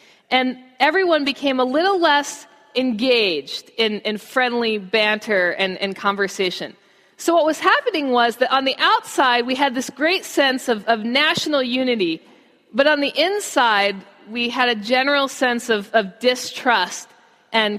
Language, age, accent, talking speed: English, 40-59, American, 150 wpm